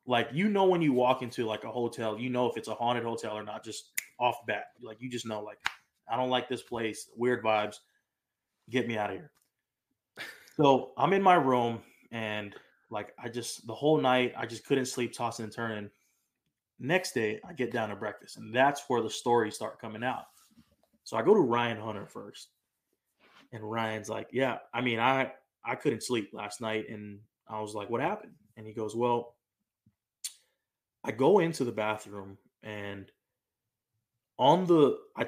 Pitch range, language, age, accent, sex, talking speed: 110-125 Hz, English, 20-39, American, male, 190 wpm